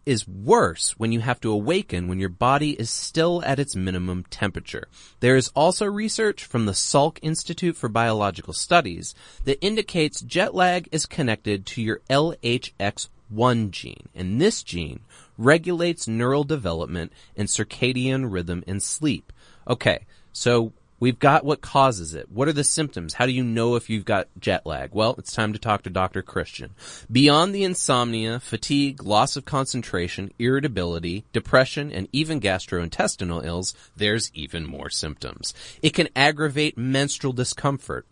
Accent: American